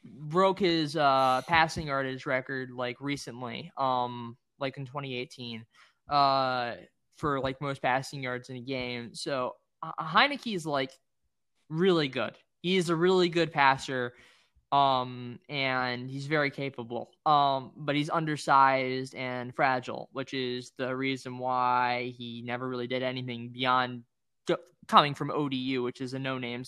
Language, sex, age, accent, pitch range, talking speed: English, male, 20-39, American, 125-145 Hz, 145 wpm